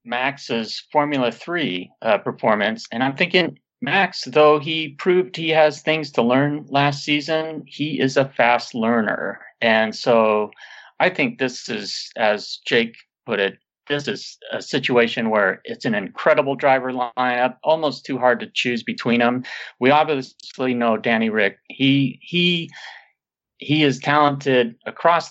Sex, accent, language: male, American, English